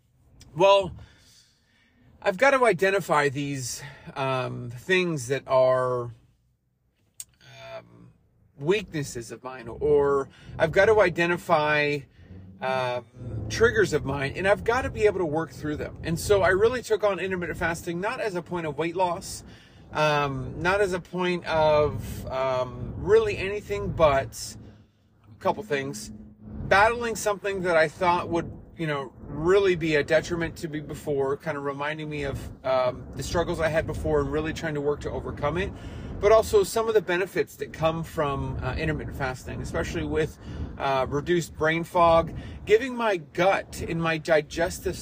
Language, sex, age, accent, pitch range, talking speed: English, male, 30-49, American, 135-195 Hz, 160 wpm